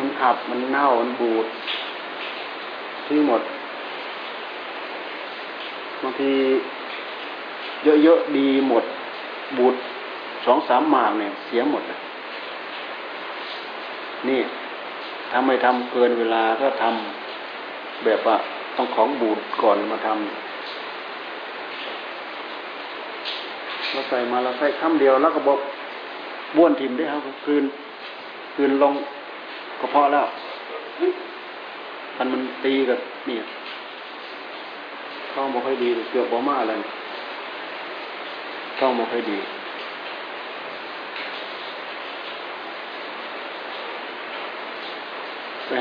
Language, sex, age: Thai, male, 60-79